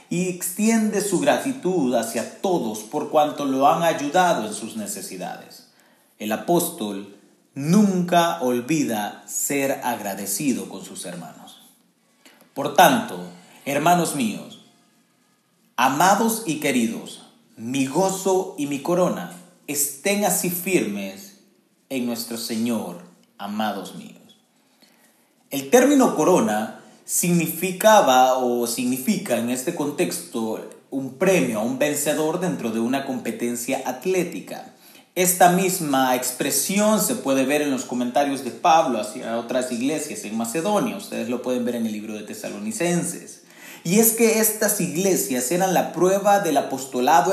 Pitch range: 125-200 Hz